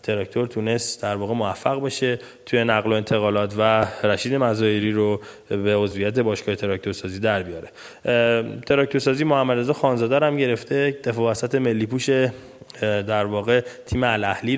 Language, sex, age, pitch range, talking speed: Persian, male, 20-39, 105-130 Hz, 135 wpm